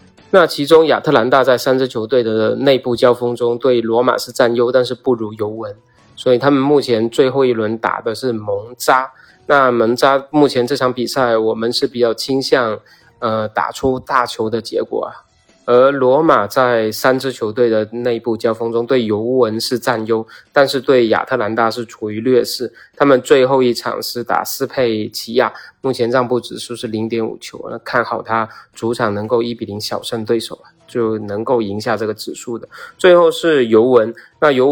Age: 20-39